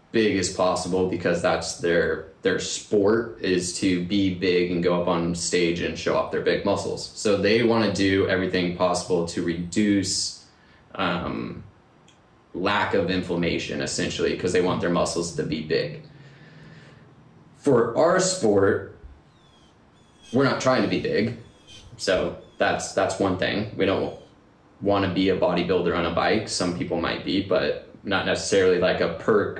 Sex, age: male, 20-39